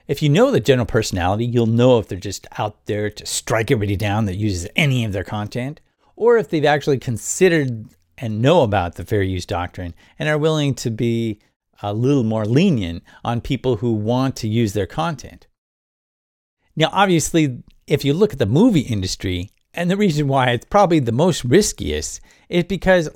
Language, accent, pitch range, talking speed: English, American, 105-150 Hz, 185 wpm